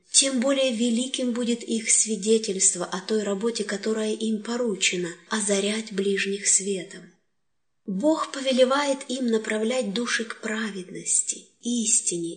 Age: 20-39